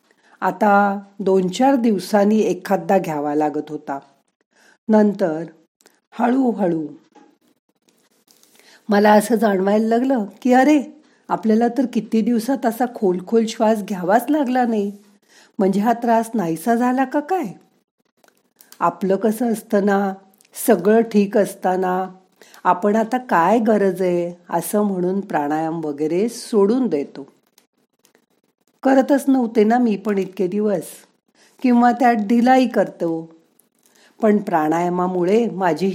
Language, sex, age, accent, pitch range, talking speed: Marathi, female, 50-69, native, 180-235 Hz, 110 wpm